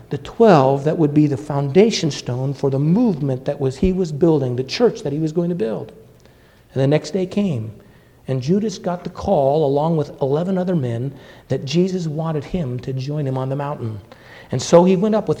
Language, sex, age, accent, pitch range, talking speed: English, male, 50-69, American, 135-195 Hz, 215 wpm